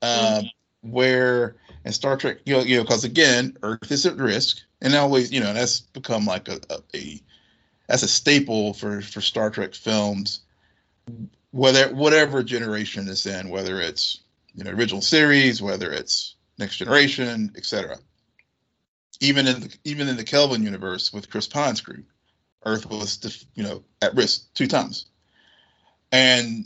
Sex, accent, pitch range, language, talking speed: male, American, 110-145 Hz, English, 155 wpm